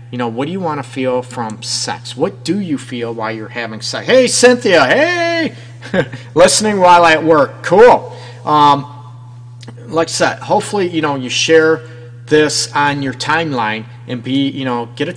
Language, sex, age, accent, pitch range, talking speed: English, male, 40-59, American, 120-140 Hz, 180 wpm